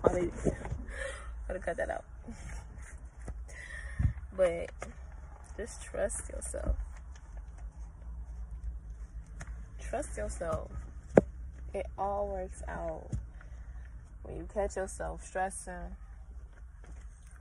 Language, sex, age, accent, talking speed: English, female, 20-39, American, 70 wpm